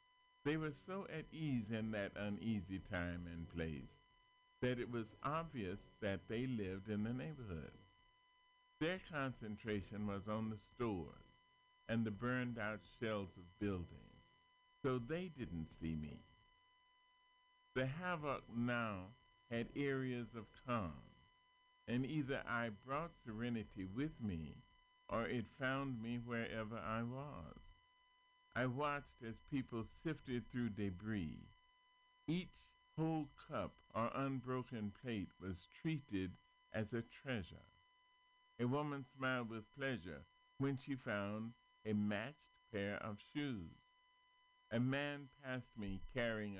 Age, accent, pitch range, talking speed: 50-69, American, 110-165 Hz, 120 wpm